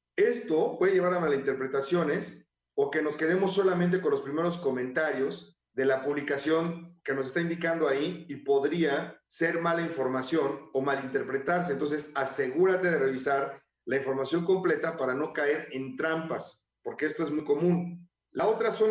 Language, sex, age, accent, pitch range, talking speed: Spanish, male, 40-59, Mexican, 145-180 Hz, 155 wpm